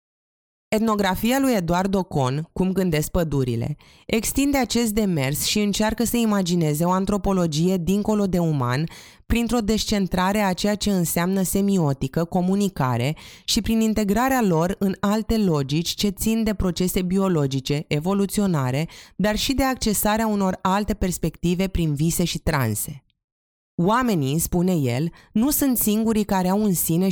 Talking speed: 135 wpm